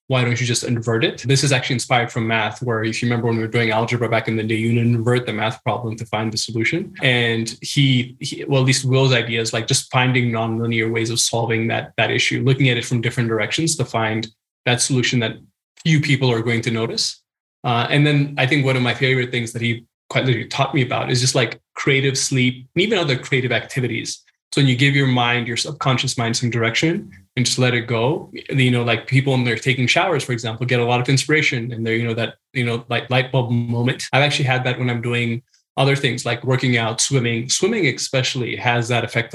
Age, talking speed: 20-39, 245 wpm